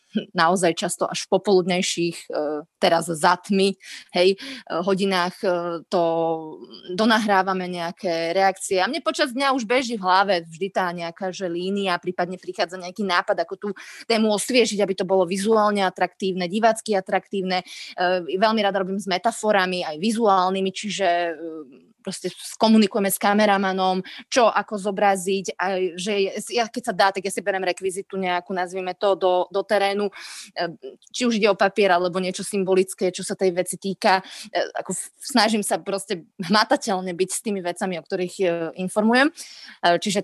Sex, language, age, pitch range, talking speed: female, Slovak, 20-39, 185-220 Hz, 150 wpm